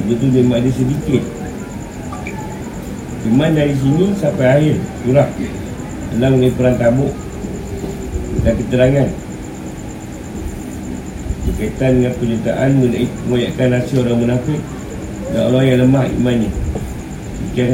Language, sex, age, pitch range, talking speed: Malay, male, 50-69, 115-130 Hz, 95 wpm